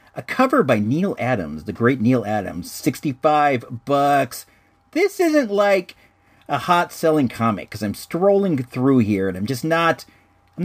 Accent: American